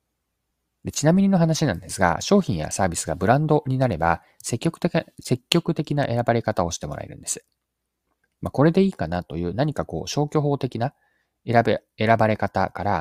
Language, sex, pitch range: Japanese, male, 95-150 Hz